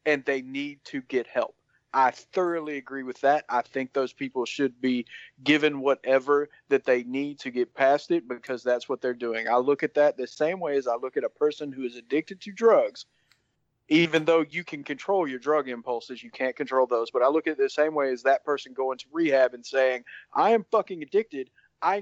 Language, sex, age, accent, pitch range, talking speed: English, male, 40-59, American, 130-165 Hz, 225 wpm